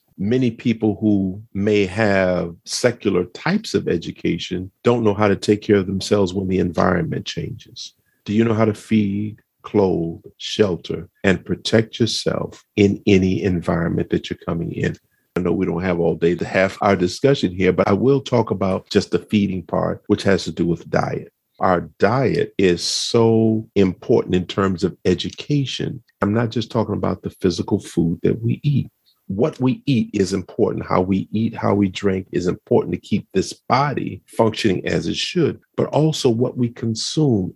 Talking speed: 180 wpm